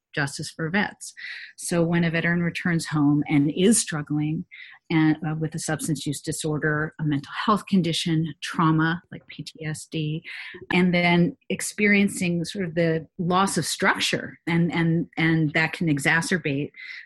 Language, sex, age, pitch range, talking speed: English, female, 40-59, 150-180 Hz, 145 wpm